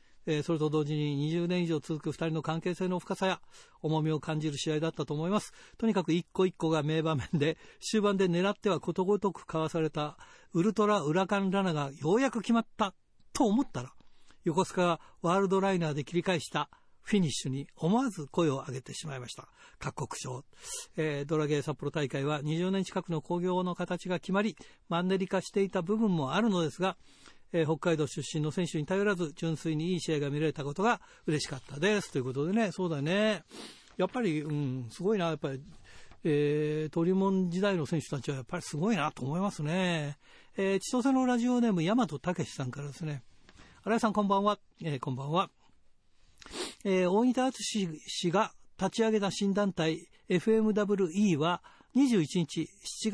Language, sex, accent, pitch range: Japanese, male, native, 155-200 Hz